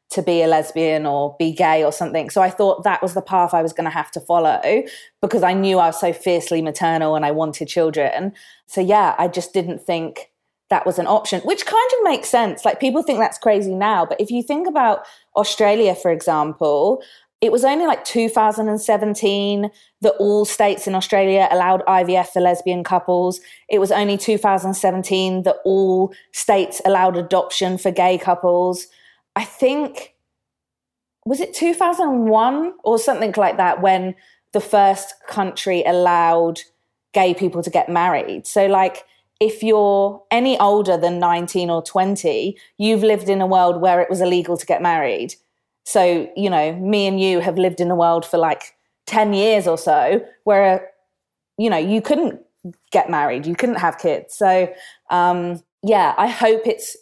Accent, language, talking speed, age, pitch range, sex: British, English, 175 wpm, 20-39, 175-210 Hz, female